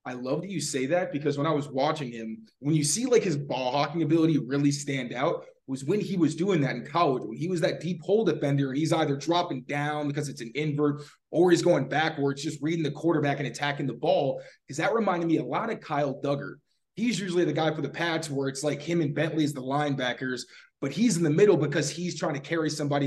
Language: English